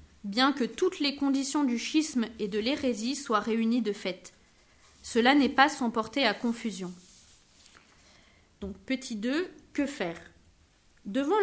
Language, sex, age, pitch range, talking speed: French, female, 20-39, 225-285 Hz, 145 wpm